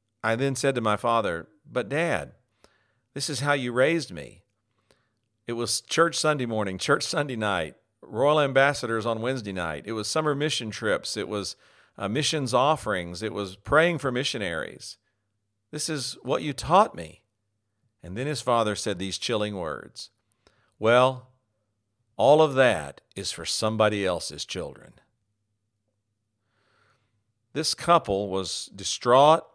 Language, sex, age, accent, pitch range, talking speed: English, male, 50-69, American, 100-125 Hz, 140 wpm